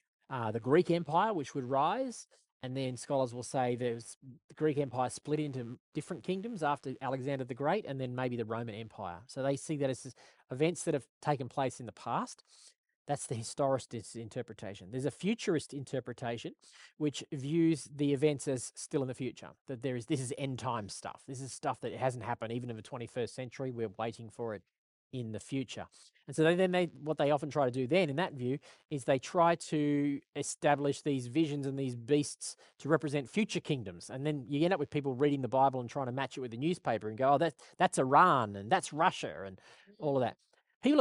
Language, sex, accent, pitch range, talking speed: English, male, Australian, 125-155 Hz, 210 wpm